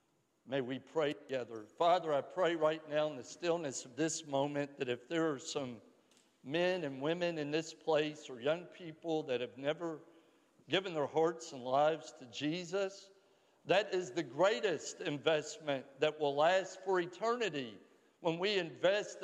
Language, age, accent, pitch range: English, 60-79, American, 150-190 Hz